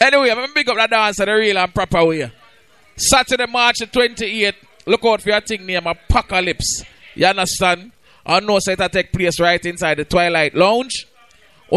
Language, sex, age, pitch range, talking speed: English, male, 20-39, 180-220 Hz, 205 wpm